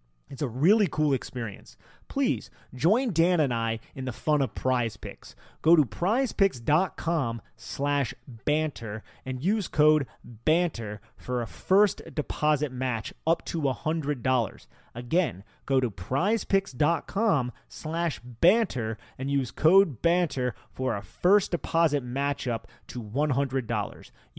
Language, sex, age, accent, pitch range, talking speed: English, male, 30-49, American, 125-170 Hz, 125 wpm